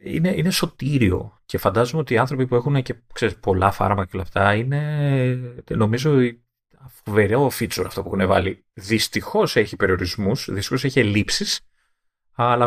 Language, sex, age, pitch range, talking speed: Greek, male, 30-49, 105-155 Hz, 140 wpm